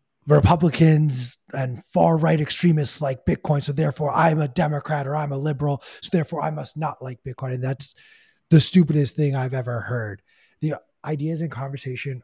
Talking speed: 165 wpm